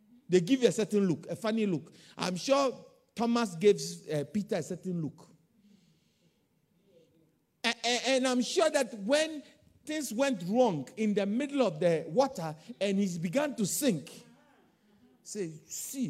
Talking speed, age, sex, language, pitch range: 150 wpm, 50-69, male, English, 185-260 Hz